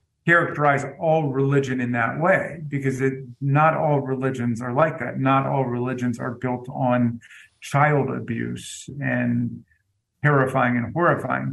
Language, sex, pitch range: English, male, 120-145 Hz